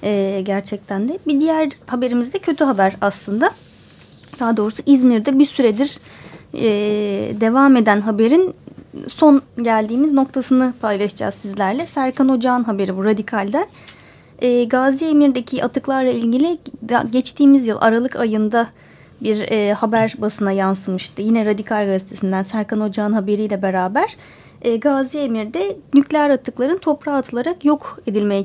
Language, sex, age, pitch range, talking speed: Turkish, female, 30-49, 210-275 Hz, 110 wpm